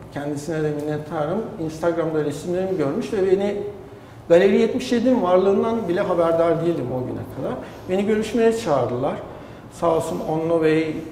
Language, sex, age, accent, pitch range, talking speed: Turkish, male, 60-79, native, 155-210 Hz, 125 wpm